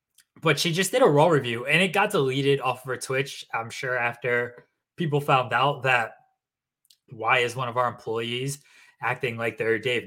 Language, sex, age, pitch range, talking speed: English, male, 20-39, 120-150 Hz, 190 wpm